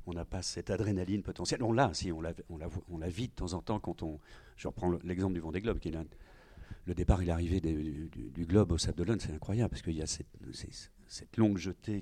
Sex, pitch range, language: male, 85-110 Hz, French